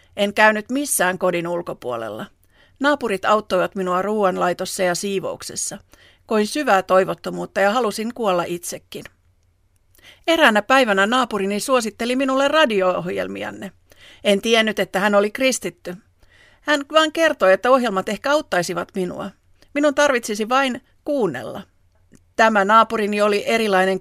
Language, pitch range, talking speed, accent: Finnish, 180-235 Hz, 115 wpm, native